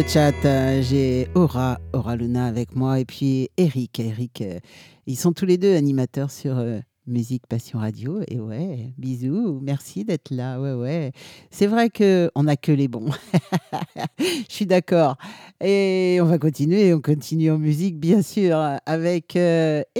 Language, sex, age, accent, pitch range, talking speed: French, male, 50-69, French, 135-170 Hz, 160 wpm